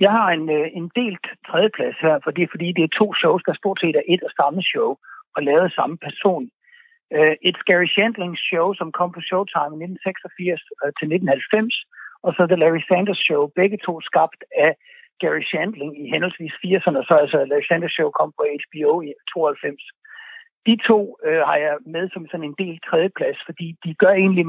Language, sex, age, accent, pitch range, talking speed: Danish, male, 60-79, native, 160-205 Hz, 195 wpm